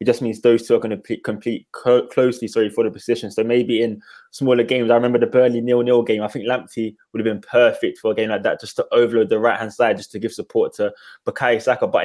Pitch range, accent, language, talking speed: 115-130 Hz, British, English, 255 wpm